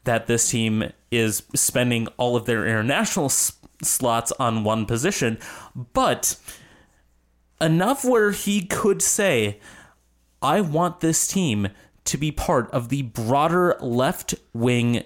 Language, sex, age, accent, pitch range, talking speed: English, male, 30-49, American, 115-160 Hz, 120 wpm